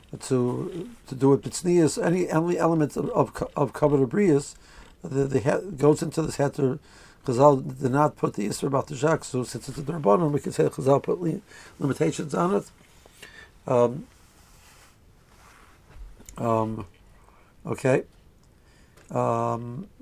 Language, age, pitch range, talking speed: English, 60-79, 130-160 Hz, 130 wpm